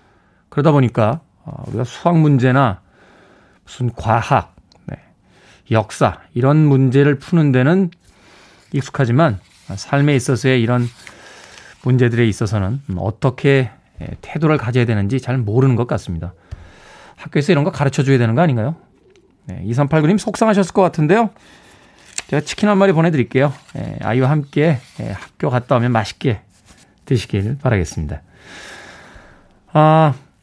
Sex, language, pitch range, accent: male, Korean, 125-190 Hz, native